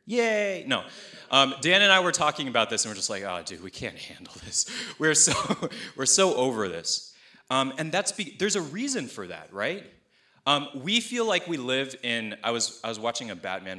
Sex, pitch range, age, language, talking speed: male, 105-165 Hz, 20-39, English, 220 wpm